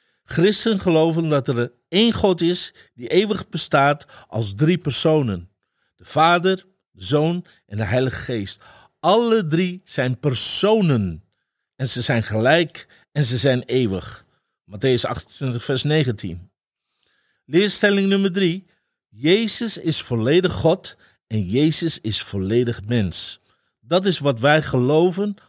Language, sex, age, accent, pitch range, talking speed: Dutch, male, 50-69, Dutch, 115-175 Hz, 130 wpm